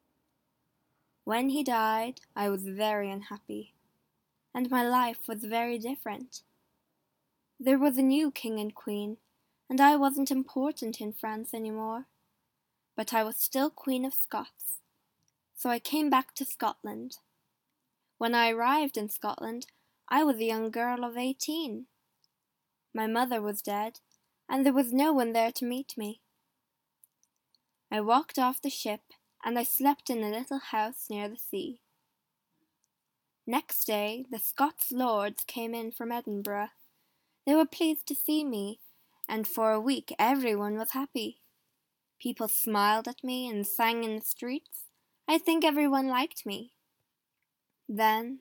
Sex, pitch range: female, 220-275 Hz